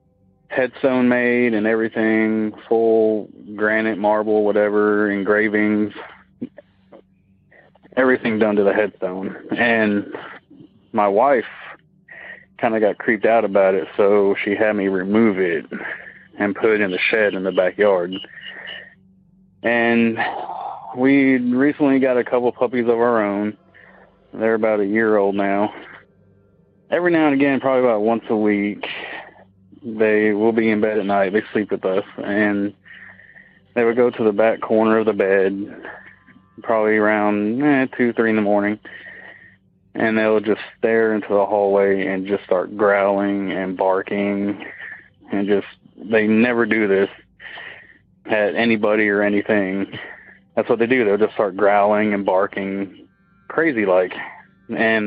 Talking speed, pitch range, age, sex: 140 wpm, 100-115 Hz, 30-49, male